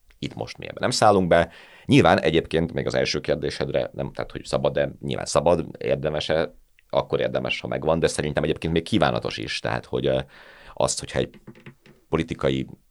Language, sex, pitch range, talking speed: Hungarian, male, 65-85 Hz, 170 wpm